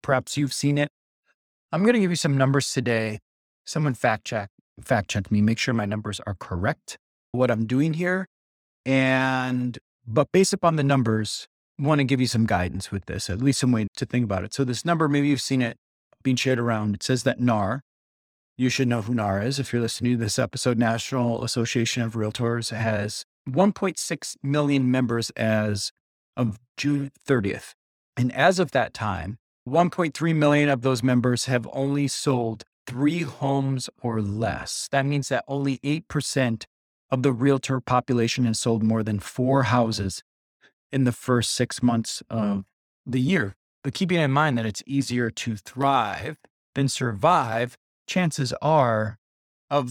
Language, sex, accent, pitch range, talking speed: English, male, American, 110-140 Hz, 170 wpm